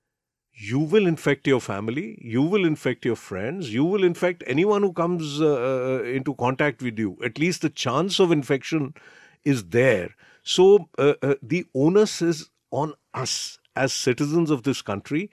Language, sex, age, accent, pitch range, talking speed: English, male, 50-69, Indian, 115-155 Hz, 165 wpm